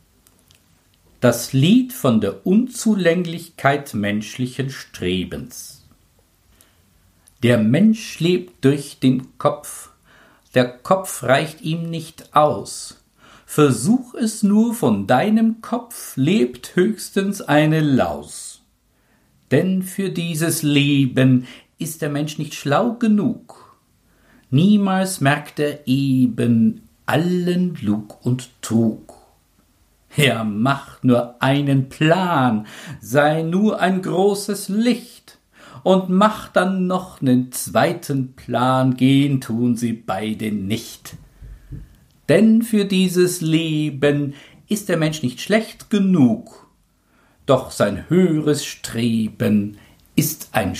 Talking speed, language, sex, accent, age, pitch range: 100 wpm, German, male, German, 50-69, 125-185 Hz